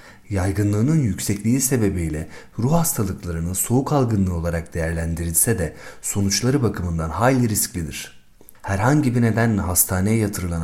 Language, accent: Turkish, native